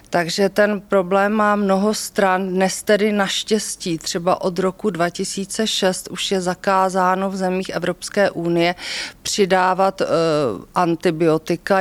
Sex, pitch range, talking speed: female, 180-200 Hz, 110 wpm